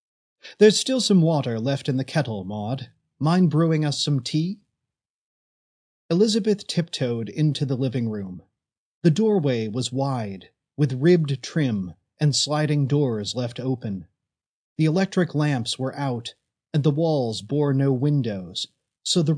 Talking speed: 140 wpm